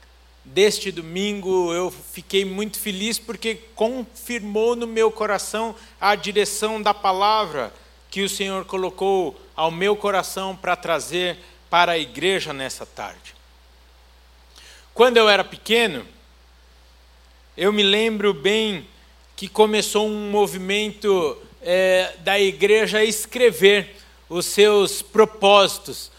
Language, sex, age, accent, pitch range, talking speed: Portuguese, male, 60-79, Brazilian, 175-230 Hz, 110 wpm